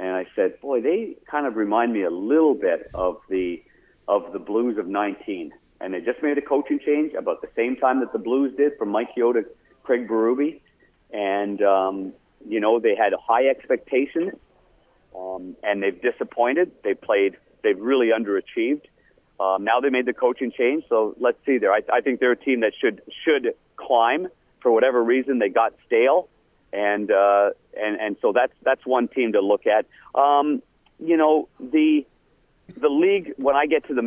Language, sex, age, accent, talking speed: English, male, 50-69, American, 185 wpm